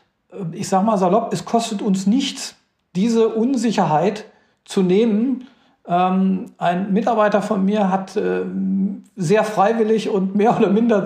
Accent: German